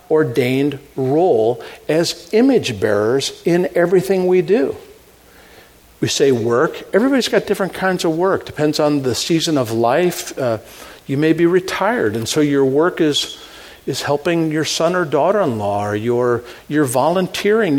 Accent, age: American, 50-69